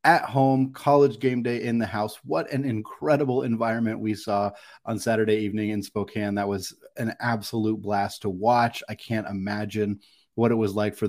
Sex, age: male, 30-49